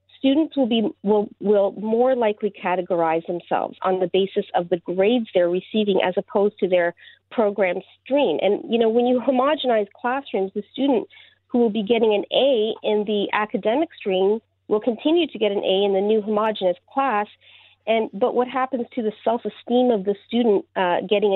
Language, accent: English, American